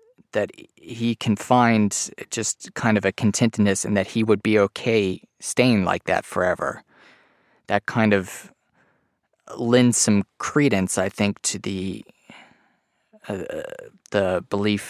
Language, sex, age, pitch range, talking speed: English, male, 30-49, 95-110 Hz, 130 wpm